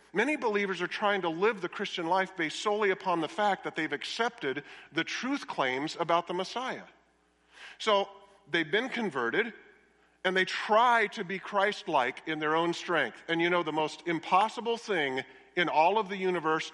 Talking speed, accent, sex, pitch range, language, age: 175 wpm, American, male, 145-195 Hz, English, 50-69